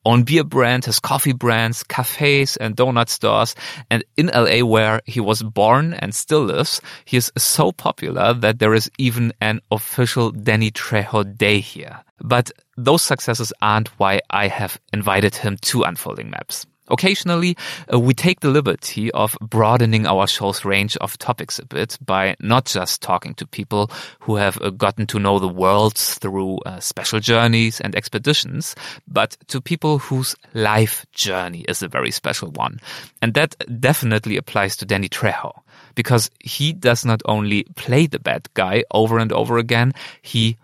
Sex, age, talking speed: male, 30-49, 165 wpm